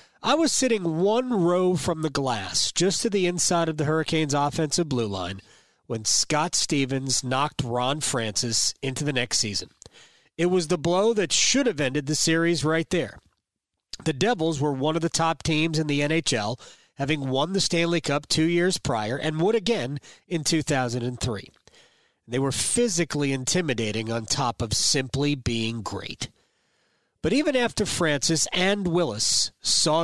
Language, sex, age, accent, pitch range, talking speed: English, male, 40-59, American, 125-175 Hz, 160 wpm